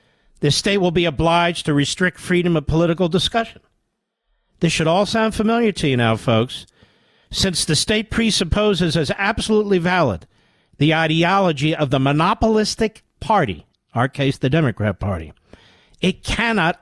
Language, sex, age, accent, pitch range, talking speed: English, male, 50-69, American, 130-175 Hz, 145 wpm